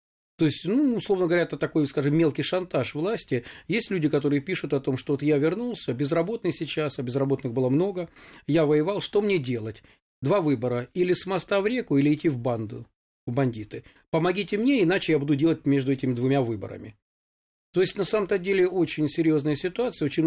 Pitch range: 135-170 Hz